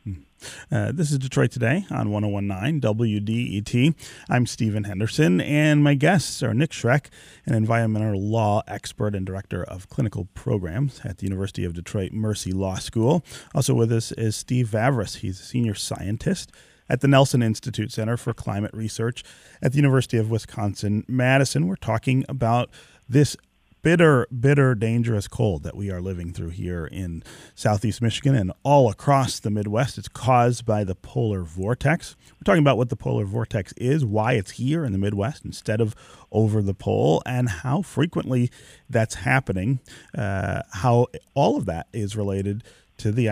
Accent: American